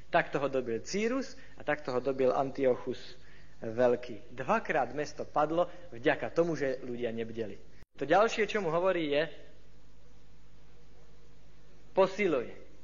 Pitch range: 125-180 Hz